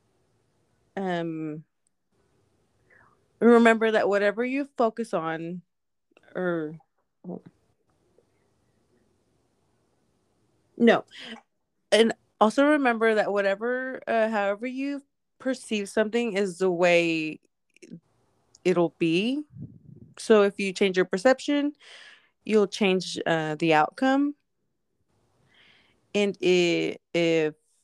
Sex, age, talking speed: female, 30-49, 80 wpm